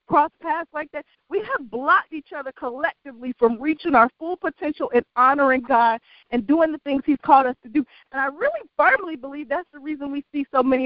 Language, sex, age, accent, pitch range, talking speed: English, female, 40-59, American, 220-295 Hz, 215 wpm